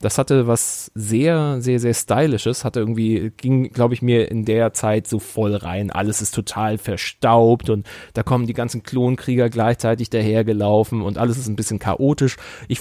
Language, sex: German, male